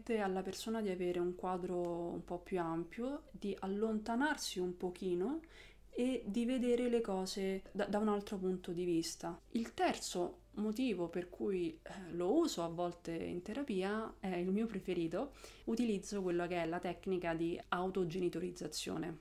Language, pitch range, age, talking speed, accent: Italian, 170-200 Hz, 30-49, 155 wpm, native